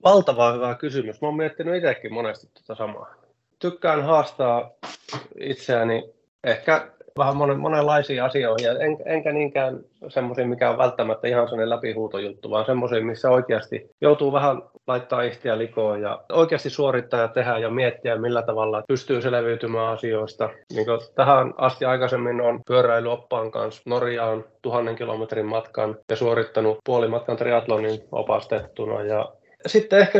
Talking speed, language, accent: 135 wpm, Finnish, native